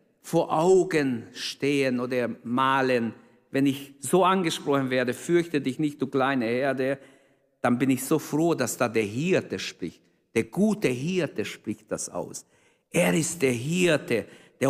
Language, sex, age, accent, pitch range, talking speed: German, male, 50-69, German, 130-175 Hz, 150 wpm